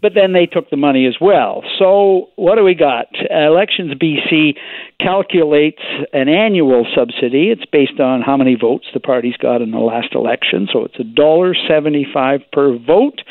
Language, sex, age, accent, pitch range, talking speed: English, male, 60-79, American, 150-210 Hz, 170 wpm